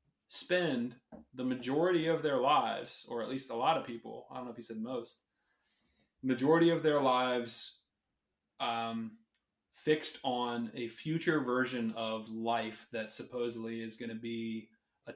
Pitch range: 115-135 Hz